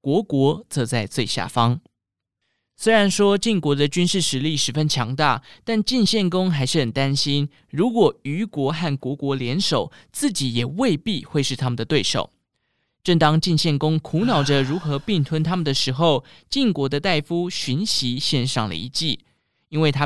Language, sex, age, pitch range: Chinese, male, 20-39, 130-170 Hz